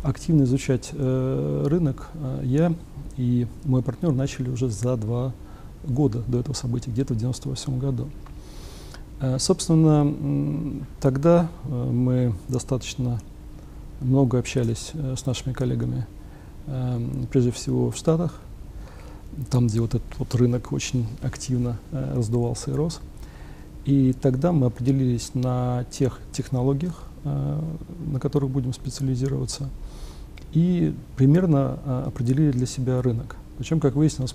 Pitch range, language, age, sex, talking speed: 120-145 Hz, Russian, 40-59, male, 120 wpm